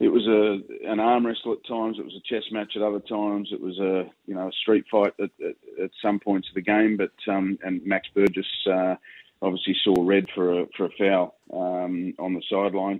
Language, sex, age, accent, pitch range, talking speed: English, male, 30-49, Australian, 90-105 Hz, 230 wpm